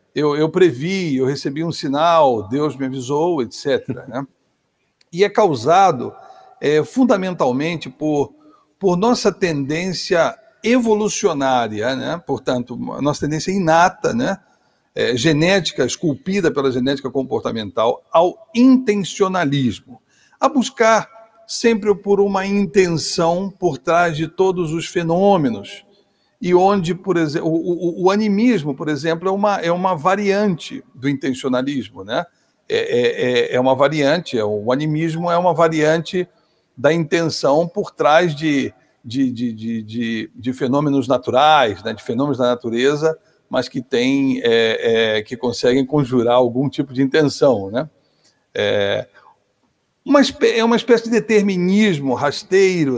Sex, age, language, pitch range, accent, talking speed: male, 60-79, Portuguese, 140-200 Hz, Brazilian, 130 wpm